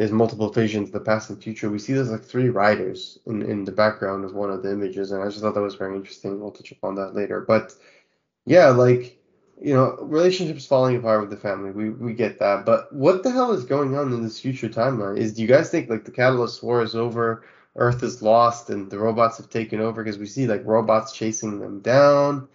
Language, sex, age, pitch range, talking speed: English, male, 20-39, 110-135 Hz, 240 wpm